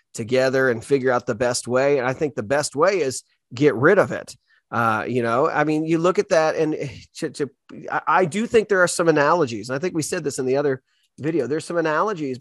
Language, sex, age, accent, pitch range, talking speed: English, male, 30-49, American, 130-165 Hz, 245 wpm